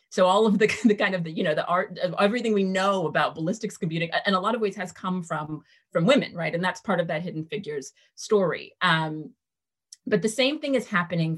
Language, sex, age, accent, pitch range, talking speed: English, female, 30-49, American, 160-195 Hz, 235 wpm